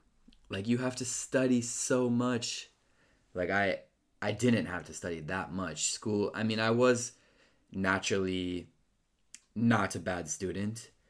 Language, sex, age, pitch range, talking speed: Italian, male, 20-39, 90-110 Hz, 140 wpm